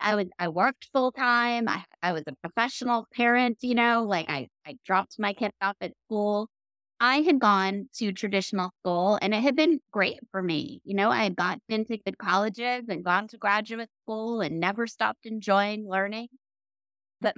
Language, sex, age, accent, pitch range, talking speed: English, female, 30-49, American, 185-235 Hz, 190 wpm